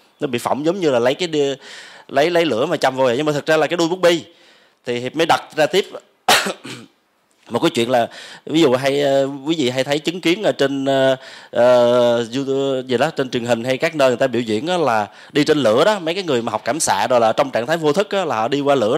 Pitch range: 135-170 Hz